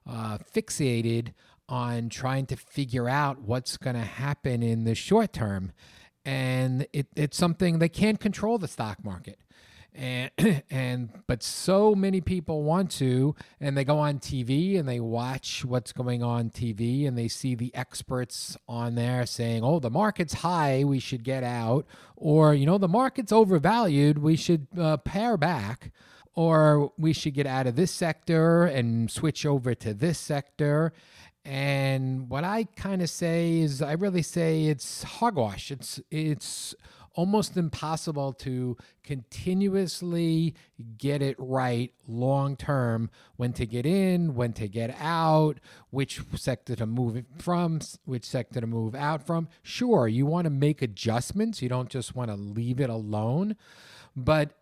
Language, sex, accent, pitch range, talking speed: English, male, American, 125-170 Hz, 160 wpm